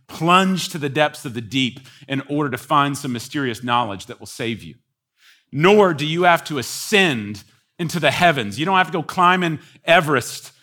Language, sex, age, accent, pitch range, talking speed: English, male, 40-59, American, 110-150 Hz, 200 wpm